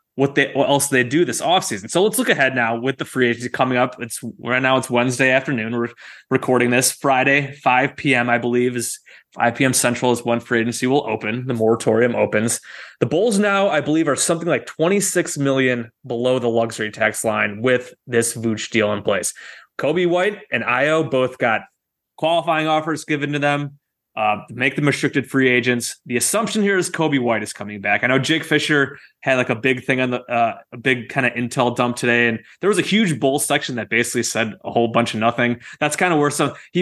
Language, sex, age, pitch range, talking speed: English, male, 20-39, 120-140 Hz, 215 wpm